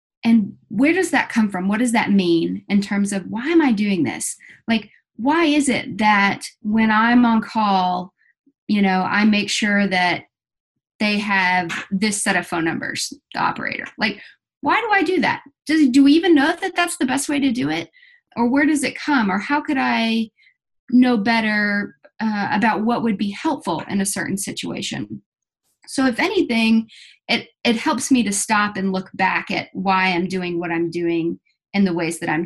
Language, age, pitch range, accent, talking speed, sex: English, 30-49, 190-265 Hz, American, 195 wpm, female